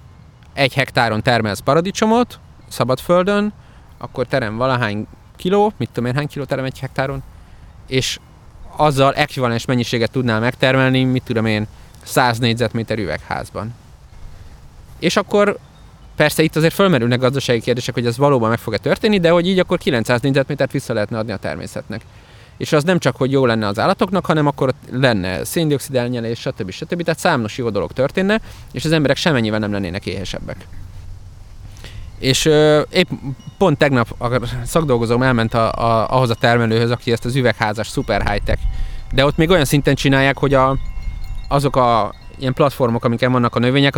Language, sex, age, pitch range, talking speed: Hungarian, male, 30-49, 110-140 Hz, 155 wpm